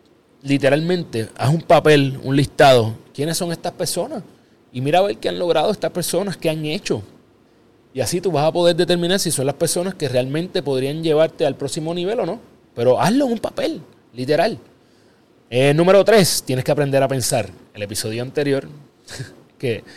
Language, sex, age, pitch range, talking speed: Spanish, male, 30-49, 120-160 Hz, 175 wpm